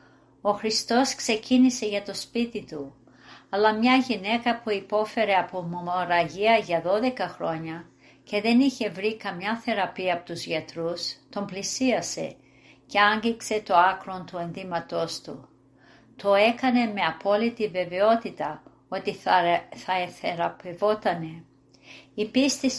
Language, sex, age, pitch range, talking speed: Greek, female, 50-69, 175-230 Hz, 120 wpm